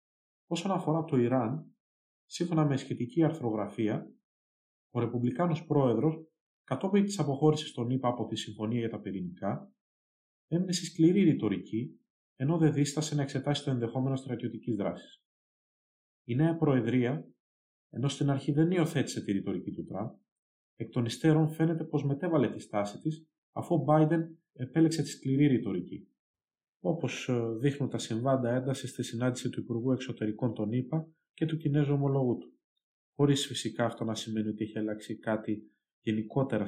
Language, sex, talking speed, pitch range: Greek, male, 145 wpm, 110-155 Hz